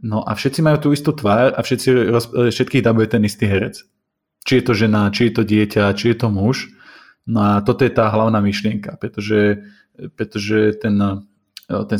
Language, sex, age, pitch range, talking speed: Slovak, male, 20-39, 105-120 Hz, 180 wpm